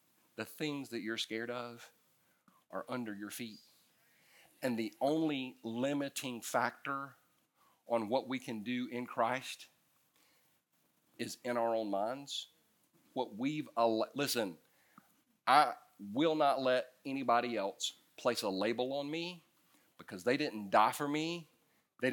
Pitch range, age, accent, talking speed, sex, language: 120-160 Hz, 40-59, American, 130 wpm, male, English